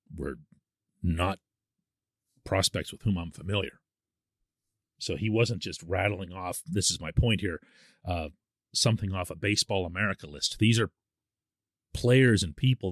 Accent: American